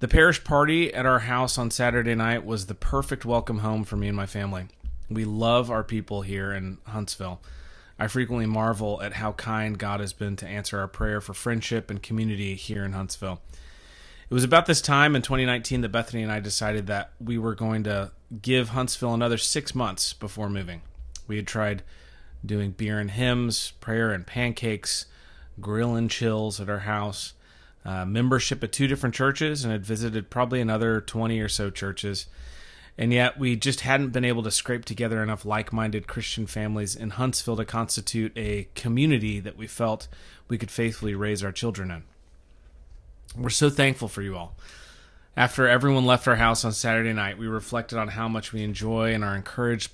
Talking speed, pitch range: 185 wpm, 100-120 Hz